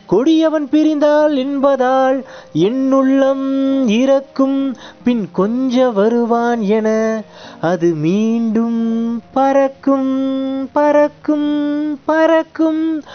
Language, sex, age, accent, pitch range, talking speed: Tamil, male, 30-49, native, 230-270 Hz, 70 wpm